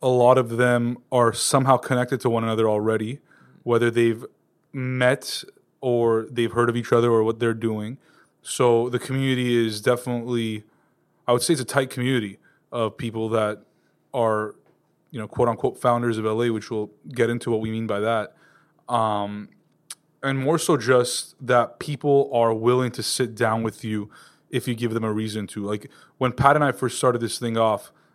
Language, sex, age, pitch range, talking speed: English, male, 20-39, 115-130 Hz, 185 wpm